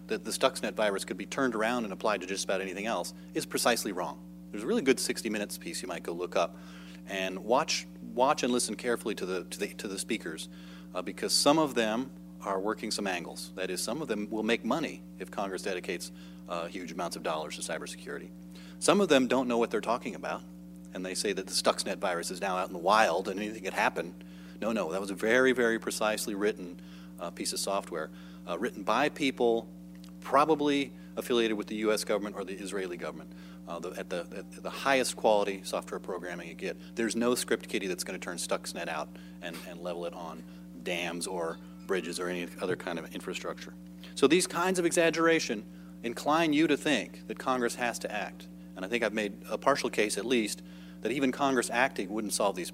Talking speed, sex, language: 215 wpm, male, English